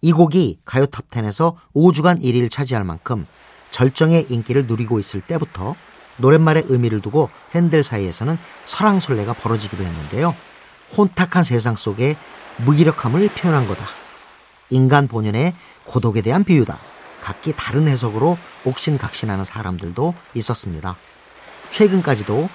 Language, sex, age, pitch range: Korean, male, 40-59, 105-165 Hz